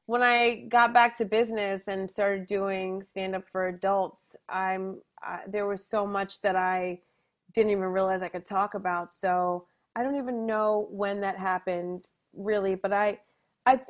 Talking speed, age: 170 wpm, 30-49